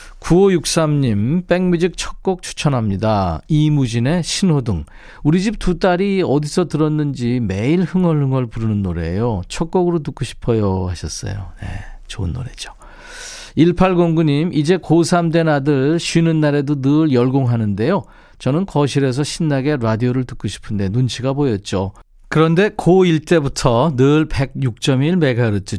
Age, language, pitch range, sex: 40-59, Korean, 120-165 Hz, male